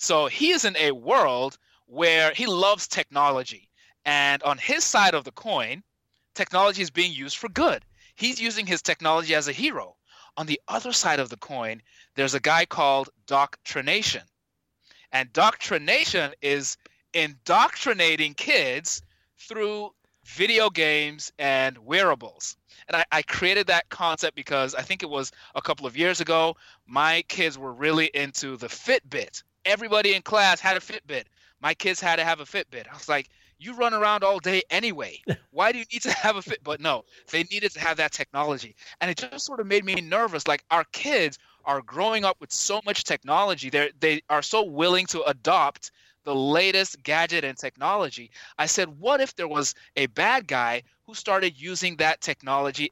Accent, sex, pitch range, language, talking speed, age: American, male, 140-200 Hz, English, 175 wpm, 30-49